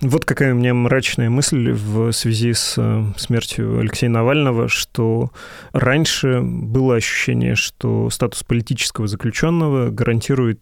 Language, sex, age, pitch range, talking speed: Russian, male, 20-39, 115-135 Hz, 120 wpm